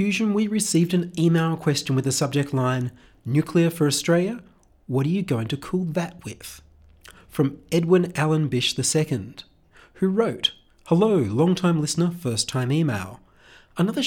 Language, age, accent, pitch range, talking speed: English, 30-49, Australian, 125-175 Hz, 140 wpm